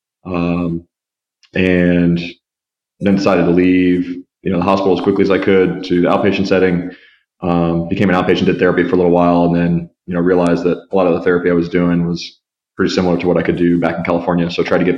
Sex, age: male, 20-39